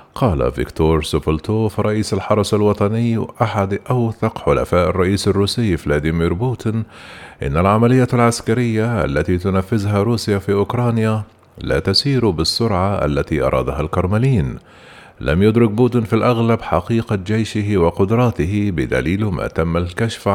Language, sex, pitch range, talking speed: Arabic, male, 90-110 Hz, 115 wpm